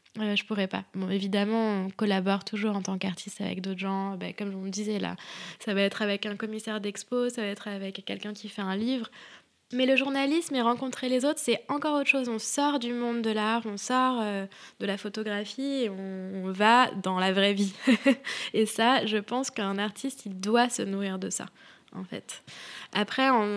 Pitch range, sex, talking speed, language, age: 195-225 Hz, female, 200 wpm, French, 20-39